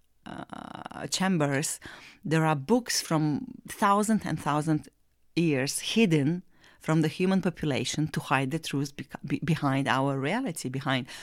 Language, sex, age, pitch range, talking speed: English, female, 40-59, 145-190 Hz, 135 wpm